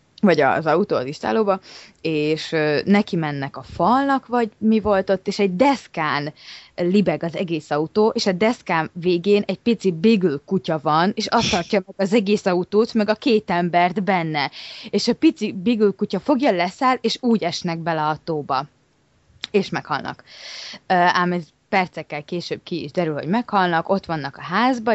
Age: 20-39